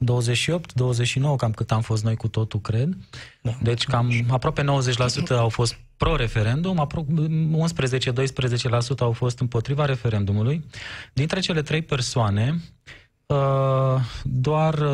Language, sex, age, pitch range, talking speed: Romanian, male, 20-39, 110-135 Hz, 115 wpm